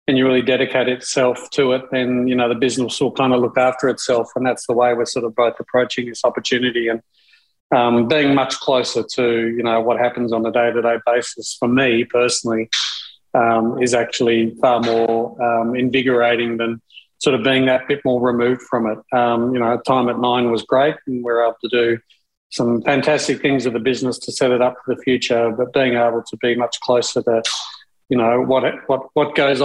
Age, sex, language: 40-59, male, English